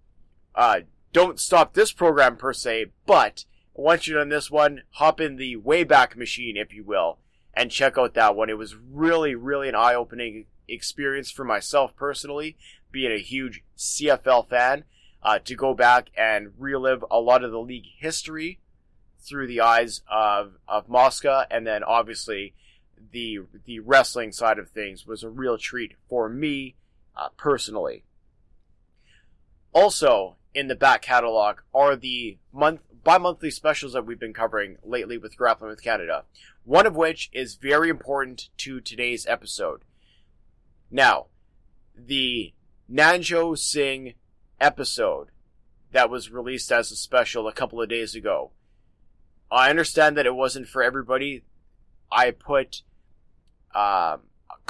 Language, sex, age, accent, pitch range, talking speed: English, male, 30-49, American, 105-140 Hz, 145 wpm